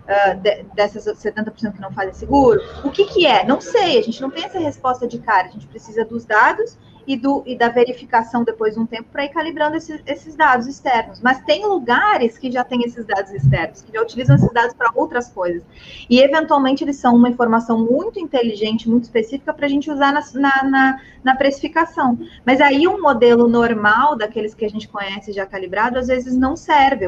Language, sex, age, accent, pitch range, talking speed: Portuguese, female, 20-39, Brazilian, 210-275 Hz, 210 wpm